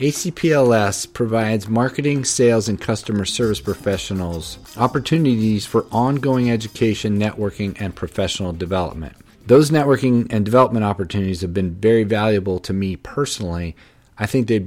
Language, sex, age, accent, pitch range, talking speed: English, male, 40-59, American, 100-120 Hz, 125 wpm